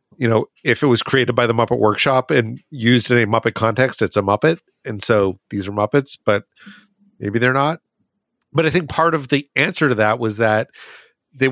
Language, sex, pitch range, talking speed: English, male, 115-145 Hz, 210 wpm